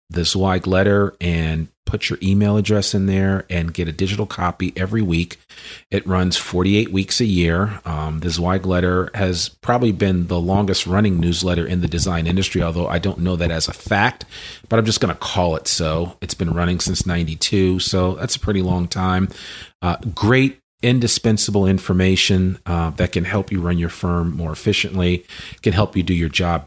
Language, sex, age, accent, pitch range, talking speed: English, male, 40-59, American, 85-95 Hz, 190 wpm